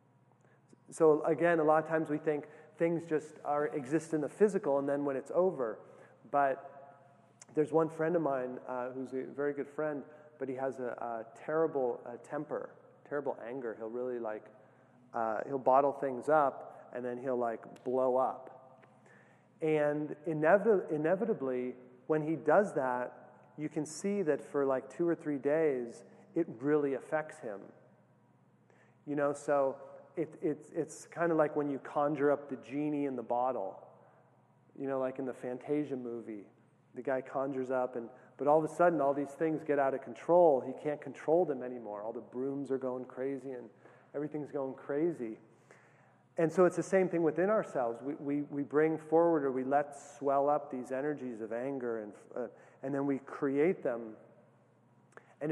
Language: English